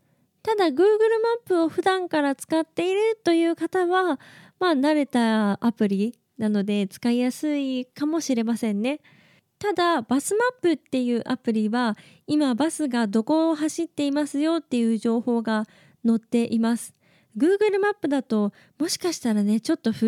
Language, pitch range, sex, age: Japanese, 220-310 Hz, female, 20-39